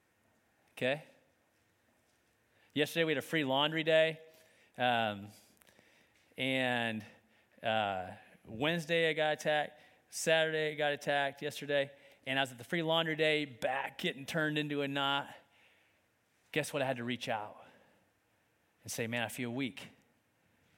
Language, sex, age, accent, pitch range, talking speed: English, male, 40-59, American, 120-145 Hz, 135 wpm